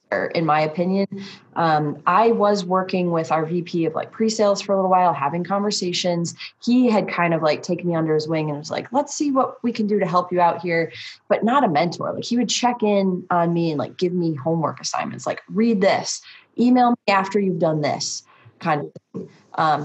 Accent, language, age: American, English, 20-39